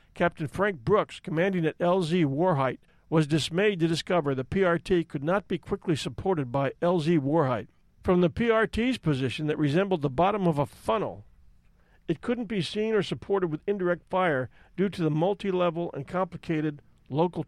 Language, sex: English, male